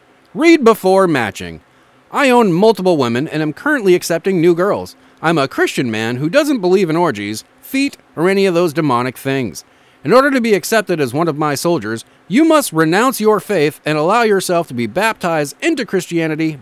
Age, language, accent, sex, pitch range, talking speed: 30-49, English, American, male, 135-225 Hz, 190 wpm